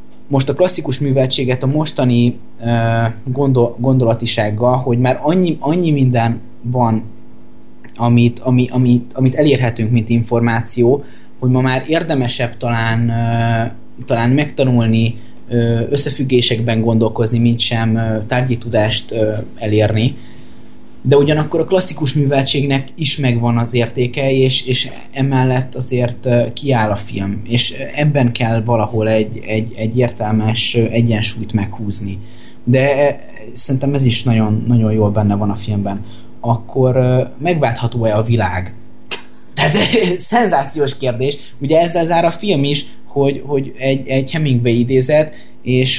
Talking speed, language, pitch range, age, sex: 130 wpm, Hungarian, 115-135 Hz, 20-39, male